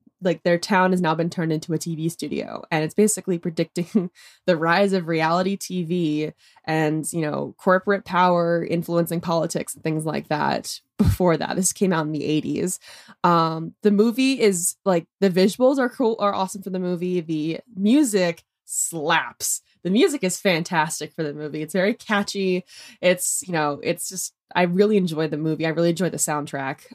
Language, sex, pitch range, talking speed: English, female, 160-200 Hz, 180 wpm